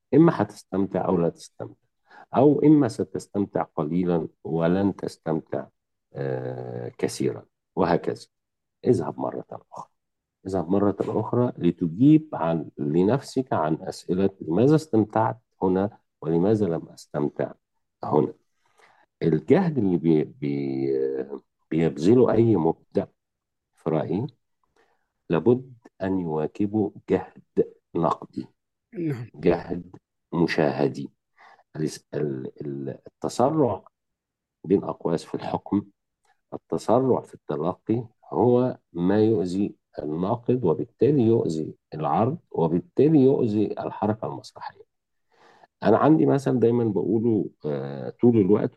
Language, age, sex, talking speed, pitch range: Arabic, 50-69, male, 90 wpm, 80-115 Hz